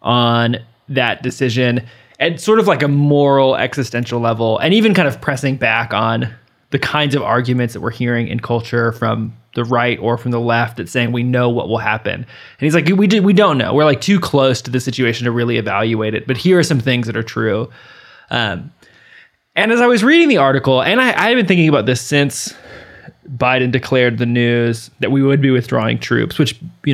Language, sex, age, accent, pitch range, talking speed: English, male, 20-39, American, 120-145 Hz, 215 wpm